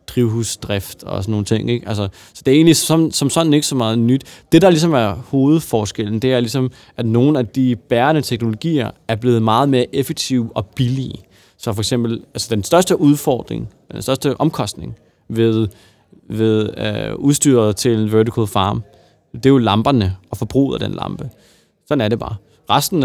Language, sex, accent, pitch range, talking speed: Danish, male, native, 110-140 Hz, 185 wpm